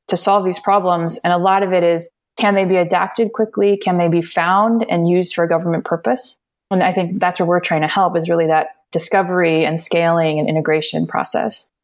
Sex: female